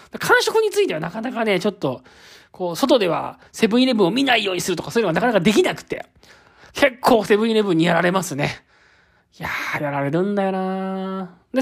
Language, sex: Japanese, male